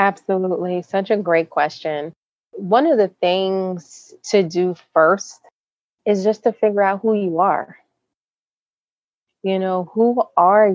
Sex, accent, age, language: female, American, 30-49, English